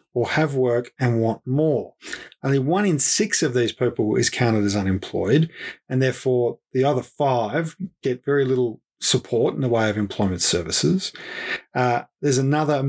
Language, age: English, 30-49